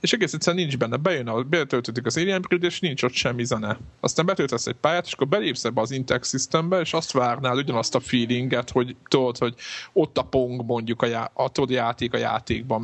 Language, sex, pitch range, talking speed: Hungarian, male, 120-140 Hz, 215 wpm